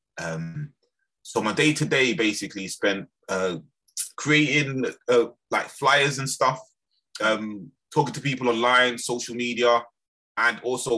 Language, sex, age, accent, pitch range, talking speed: English, male, 20-39, British, 95-120 Hz, 130 wpm